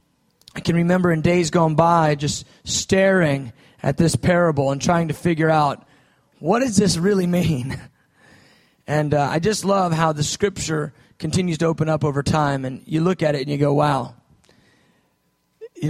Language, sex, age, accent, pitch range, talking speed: English, male, 30-49, American, 155-190 Hz, 175 wpm